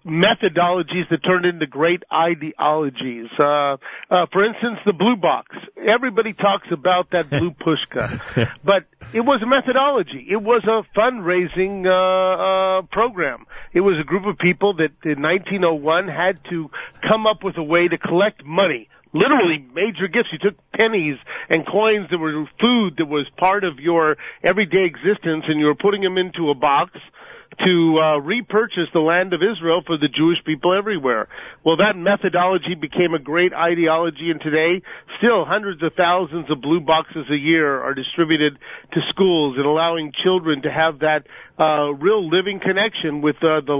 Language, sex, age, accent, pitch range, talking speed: English, male, 50-69, American, 160-200 Hz, 170 wpm